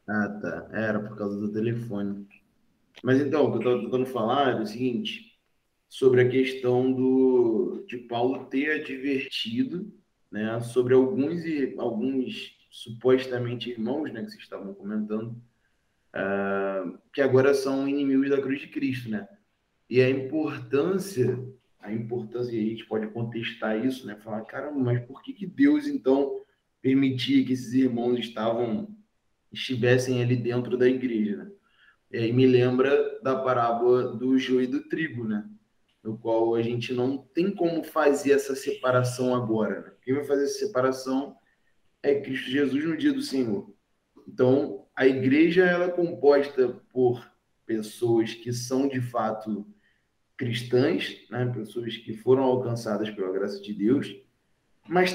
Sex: male